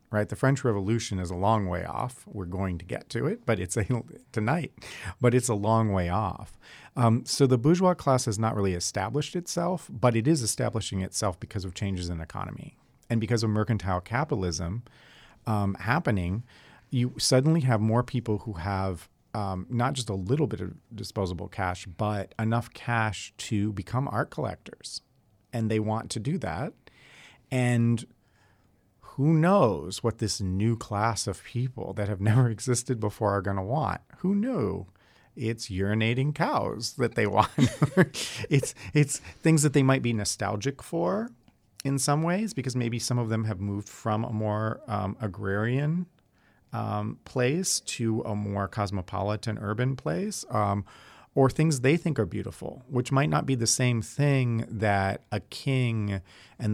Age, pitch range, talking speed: 40-59, 100-130 Hz, 165 wpm